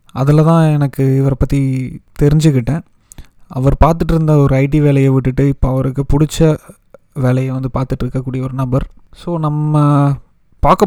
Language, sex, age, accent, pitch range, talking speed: Tamil, male, 20-39, native, 130-155 Hz, 140 wpm